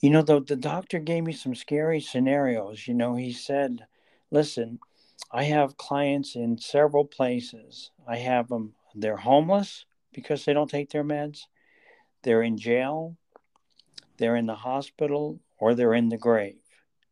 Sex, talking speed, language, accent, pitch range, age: male, 155 wpm, English, American, 115-130 Hz, 60-79